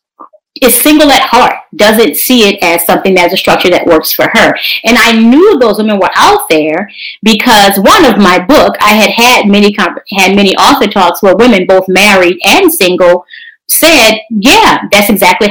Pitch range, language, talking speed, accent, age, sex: 190-250 Hz, English, 180 wpm, American, 30-49, female